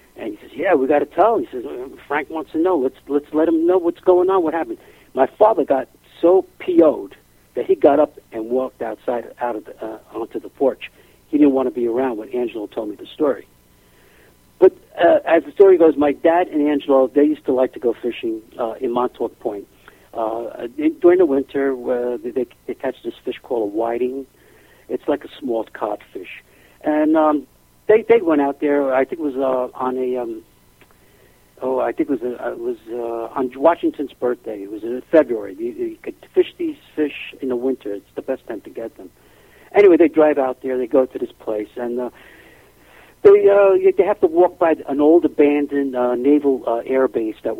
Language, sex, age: English, male, 50-69